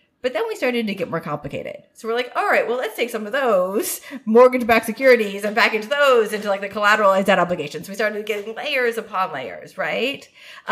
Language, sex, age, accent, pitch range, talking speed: English, female, 30-49, American, 185-250 Hz, 220 wpm